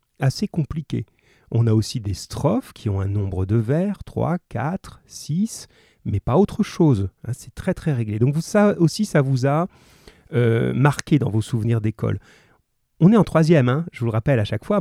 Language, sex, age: French, male, 30-49